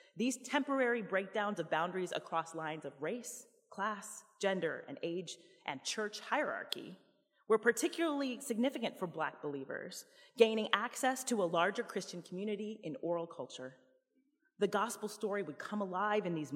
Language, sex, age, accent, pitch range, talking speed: English, female, 30-49, American, 170-235 Hz, 145 wpm